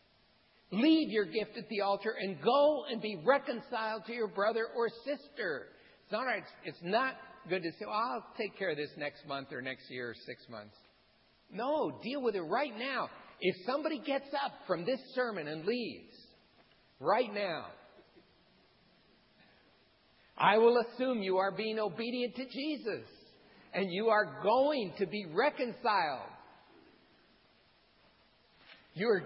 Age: 60-79